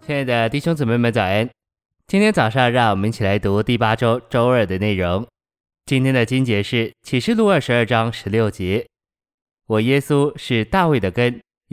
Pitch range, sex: 105-130 Hz, male